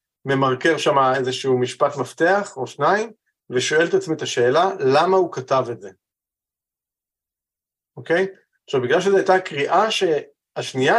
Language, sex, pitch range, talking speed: Hebrew, male, 150-200 Hz, 135 wpm